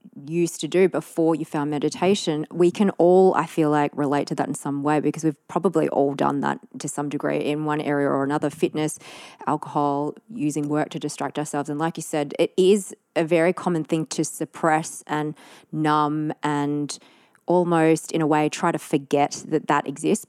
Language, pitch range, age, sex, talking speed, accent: English, 150-175 Hz, 20-39, female, 190 wpm, Australian